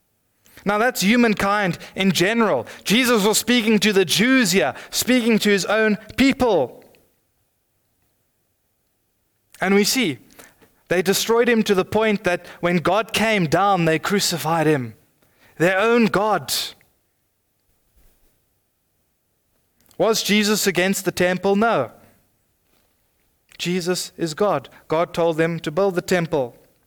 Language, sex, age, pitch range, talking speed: English, male, 20-39, 165-205 Hz, 120 wpm